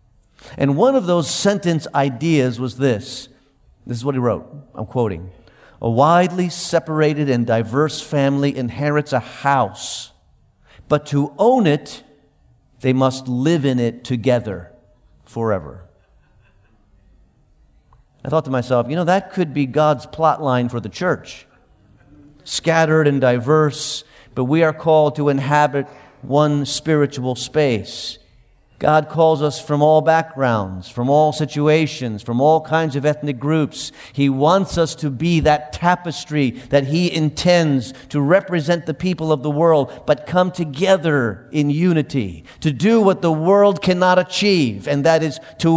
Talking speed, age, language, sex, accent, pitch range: 145 wpm, 50-69, English, male, American, 125-160 Hz